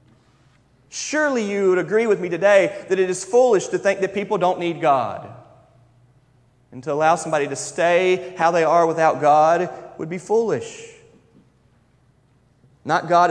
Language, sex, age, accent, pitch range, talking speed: English, male, 30-49, American, 140-210 Hz, 155 wpm